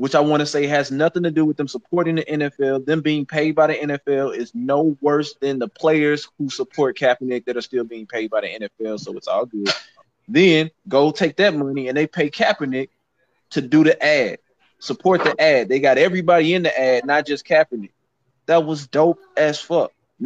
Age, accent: 20-39, American